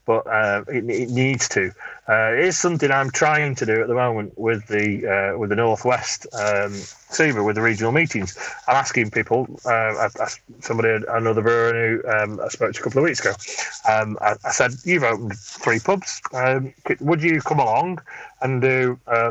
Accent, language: British, English